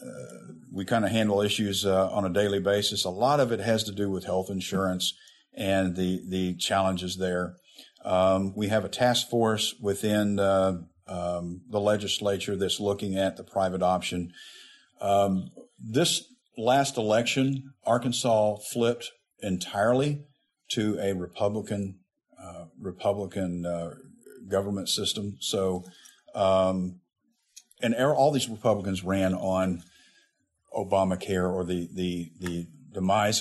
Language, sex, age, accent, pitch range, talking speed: English, male, 50-69, American, 90-105 Hz, 130 wpm